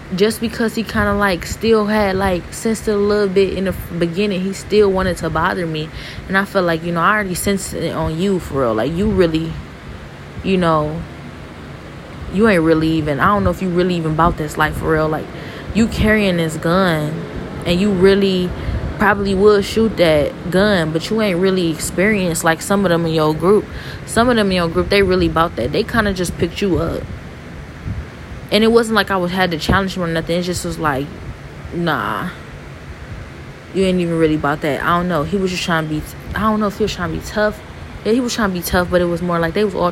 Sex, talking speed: female, 235 wpm